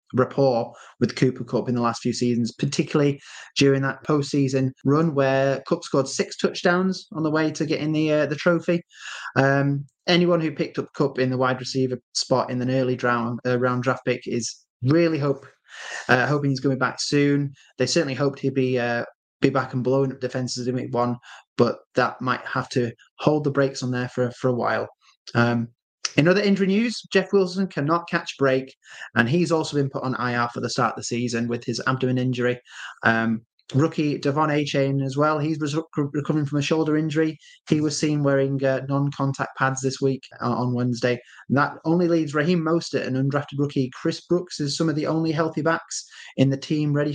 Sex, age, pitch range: male, 20-39, 125-155 Hz